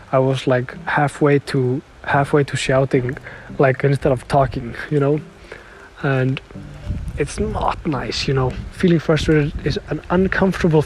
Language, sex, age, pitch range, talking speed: English, male, 20-39, 130-150 Hz, 140 wpm